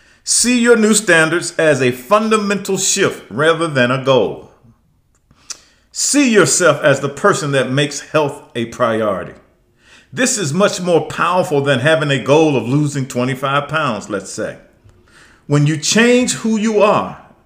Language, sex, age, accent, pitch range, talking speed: English, male, 40-59, American, 145-200 Hz, 150 wpm